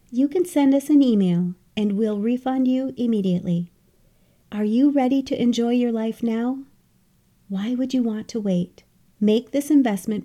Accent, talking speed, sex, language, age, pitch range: American, 165 wpm, female, English, 40-59, 195-260 Hz